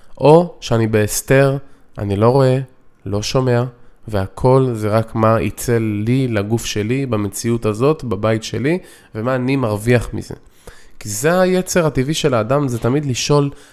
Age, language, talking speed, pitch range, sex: 20-39, Hebrew, 145 wpm, 115-150 Hz, male